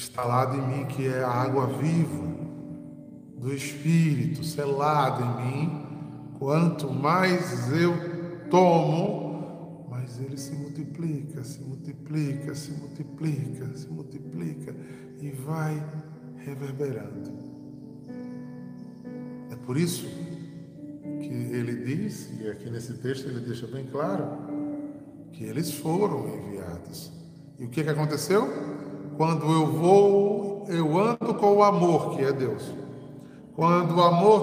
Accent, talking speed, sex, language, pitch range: Brazilian, 115 wpm, male, Portuguese, 135-180 Hz